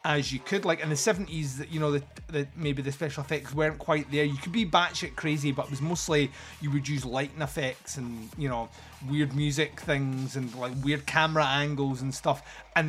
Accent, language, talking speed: British, English, 225 wpm